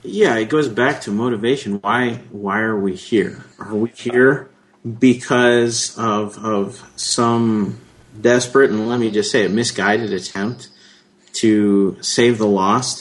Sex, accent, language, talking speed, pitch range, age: male, American, English, 145 wpm, 105-135 Hz, 40-59